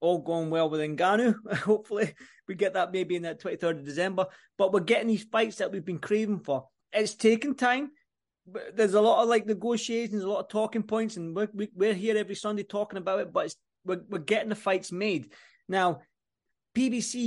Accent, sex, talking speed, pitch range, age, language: British, male, 205 wpm, 175-225 Hz, 20-39, English